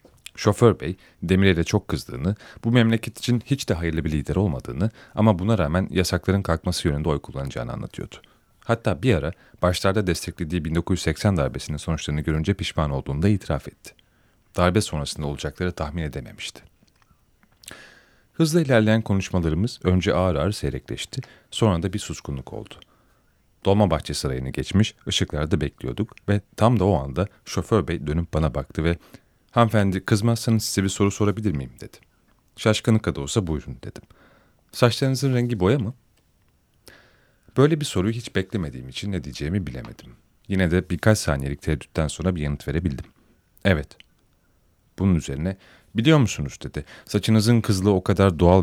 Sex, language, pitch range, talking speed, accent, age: male, Turkish, 80-110 Hz, 145 wpm, native, 40-59